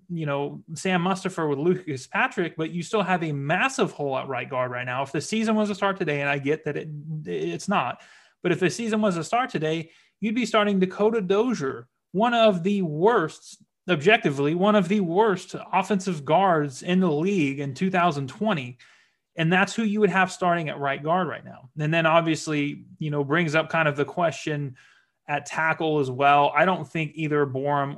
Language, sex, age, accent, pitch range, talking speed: English, male, 30-49, American, 140-190 Hz, 200 wpm